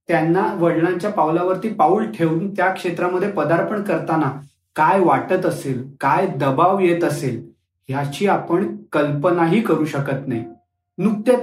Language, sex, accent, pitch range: Marathi, male, native, 150-185 Hz